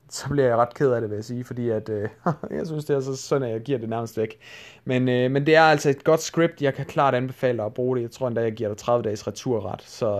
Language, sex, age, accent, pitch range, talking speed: Danish, male, 30-49, native, 125-170 Hz, 300 wpm